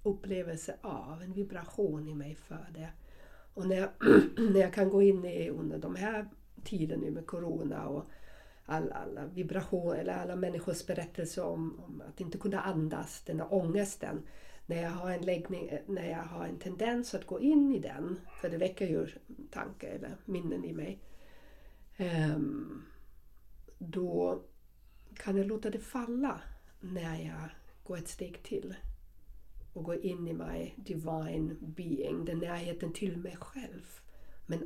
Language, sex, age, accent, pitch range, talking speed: Swedish, female, 60-79, native, 160-200 Hz, 155 wpm